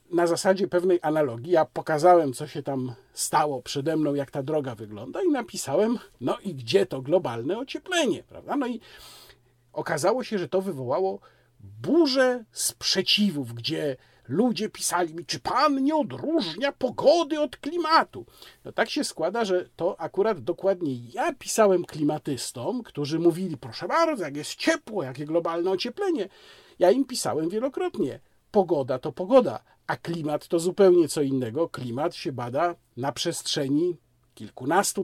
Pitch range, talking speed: 140-200 Hz, 145 wpm